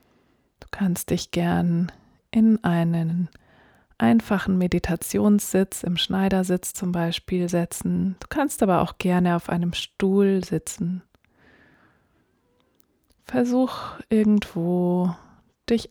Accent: German